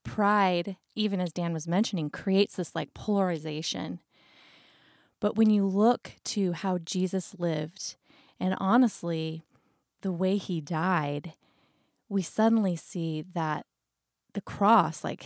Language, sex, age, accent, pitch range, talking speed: English, female, 20-39, American, 165-200 Hz, 120 wpm